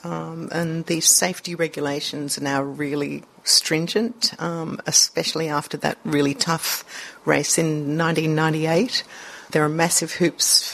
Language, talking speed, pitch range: English, 125 wpm, 150-175 Hz